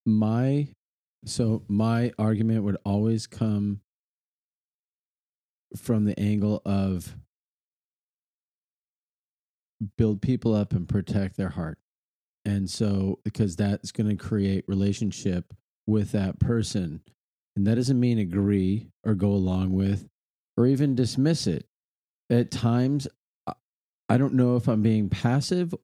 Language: English